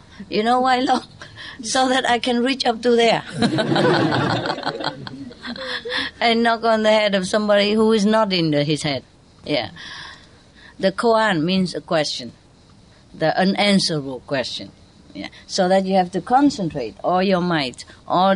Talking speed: 150 wpm